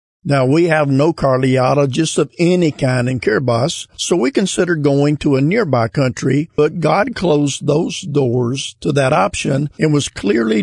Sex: male